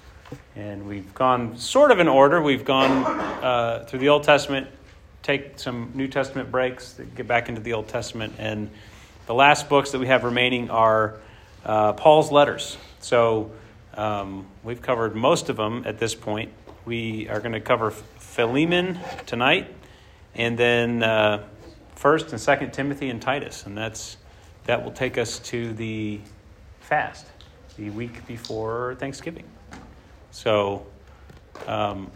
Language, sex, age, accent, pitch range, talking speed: English, male, 40-59, American, 105-135 Hz, 145 wpm